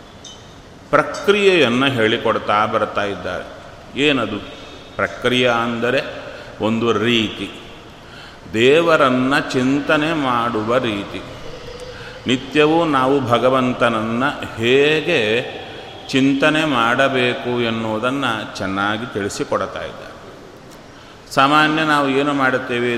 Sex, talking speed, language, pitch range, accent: male, 70 wpm, Kannada, 115-145 Hz, native